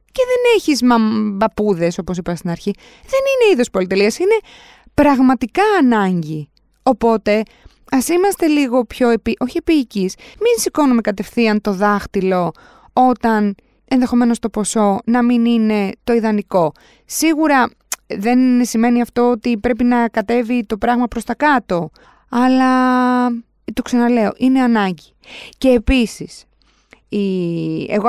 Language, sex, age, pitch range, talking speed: Greek, female, 20-39, 200-250 Hz, 125 wpm